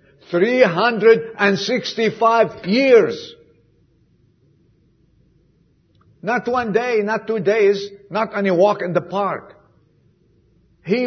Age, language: 60-79, English